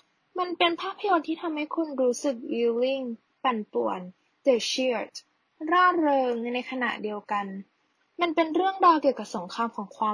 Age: 10-29